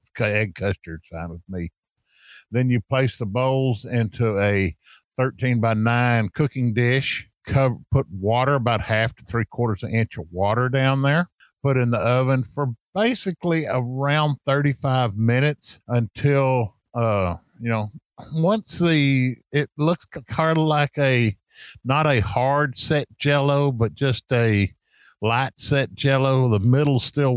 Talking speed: 150 wpm